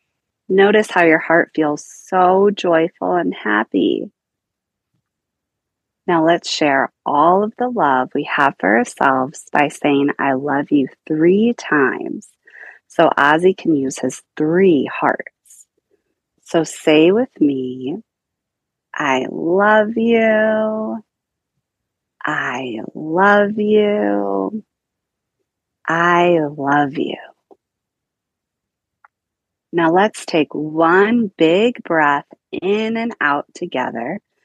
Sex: female